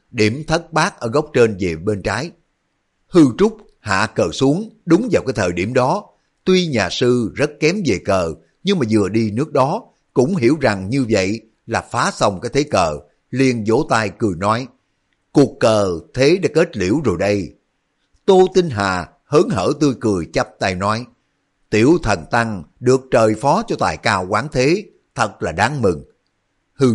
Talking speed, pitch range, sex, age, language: 185 wpm, 100-140 Hz, male, 60-79, Vietnamese